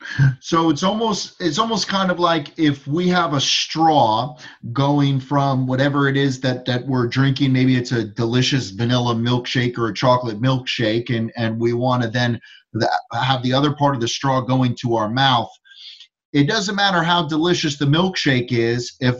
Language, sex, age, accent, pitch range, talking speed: English, male, 30-49, American, 125-155 Hz, 195 wpm